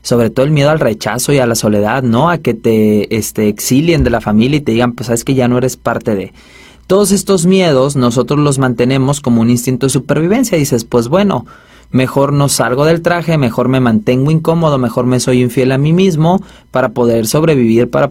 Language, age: Spanish, 30-49